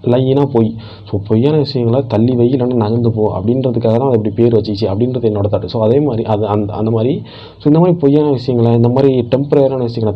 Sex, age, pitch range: male, 20-39, 105-125 Hz